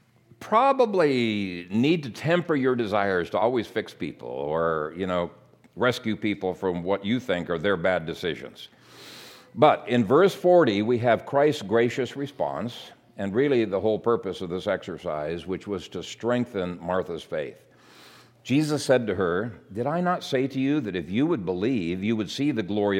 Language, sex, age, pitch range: English, male, 60-79, 105-155 Hz